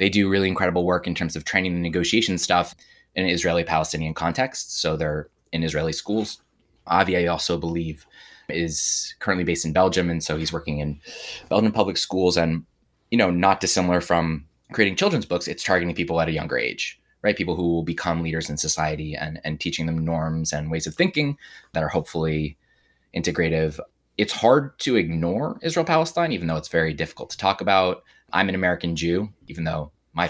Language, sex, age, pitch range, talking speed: English, male, 20-39, 80-90 Hz, 190 wpm